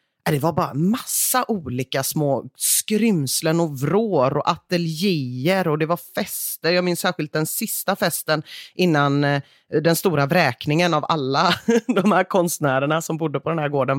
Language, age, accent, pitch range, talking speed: Swedish, 30-49, native, 140-200 Hz, 155 wpm